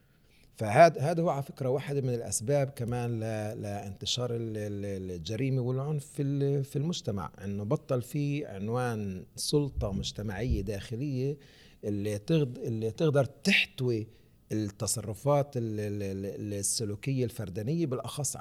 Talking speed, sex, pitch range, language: 90 wpm, male, 105-135 Hz, Arabic